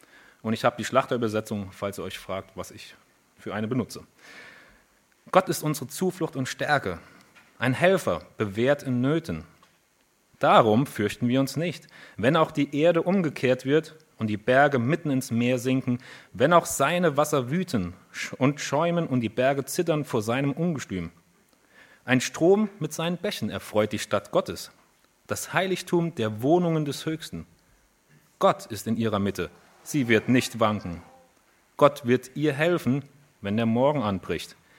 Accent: German